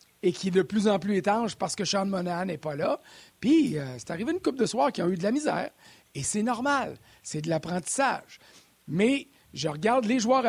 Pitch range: 175-225 Hz